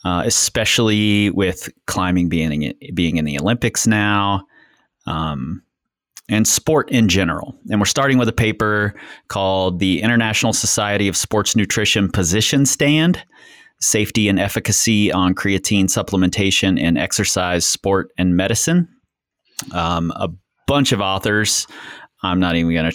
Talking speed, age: 135 wpm, 30-49